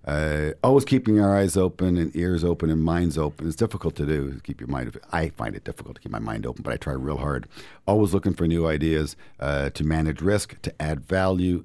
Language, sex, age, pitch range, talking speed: English, male, 50-69, 80-105 Hz, 235 wpm